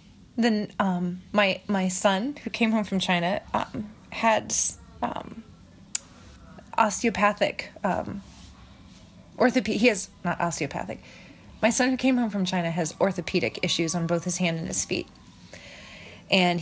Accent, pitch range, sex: American, 170-200 Hz, female